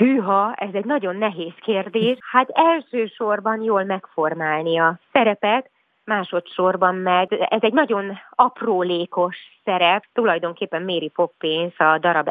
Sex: female